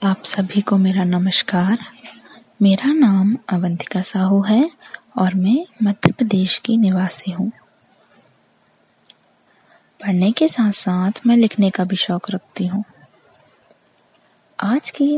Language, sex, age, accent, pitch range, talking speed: English, female, 20-39, Indian, 190-255 Hz, 115 wpm